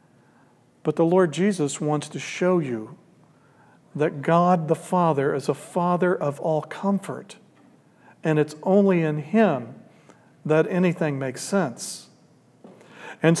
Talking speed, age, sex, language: 125 wpm, 50-69, male, English